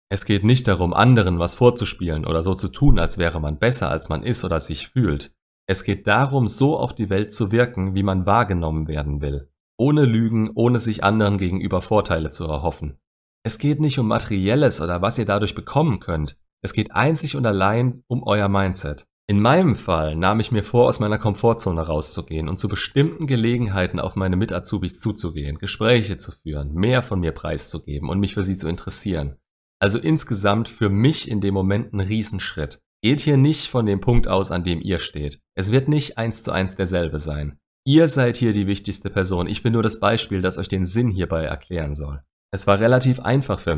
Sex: male